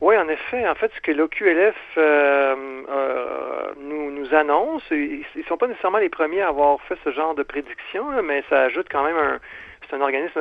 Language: French